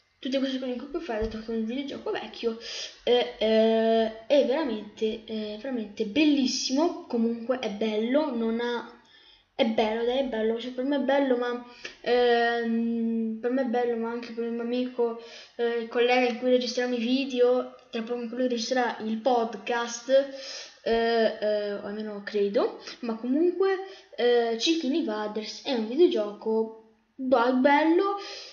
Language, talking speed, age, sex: Italian, 160 wpm, 10-29, female